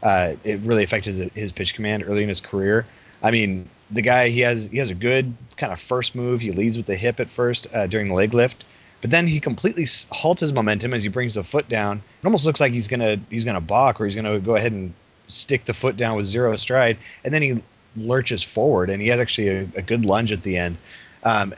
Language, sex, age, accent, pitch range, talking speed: English, male, 30-49, American, 100-125 Hz, 255 wpm